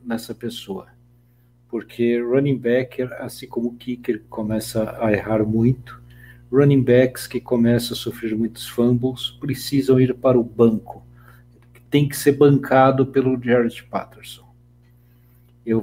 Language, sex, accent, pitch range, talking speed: Portuguese, male, Brazilian, 120-165 Hz, 130 wpm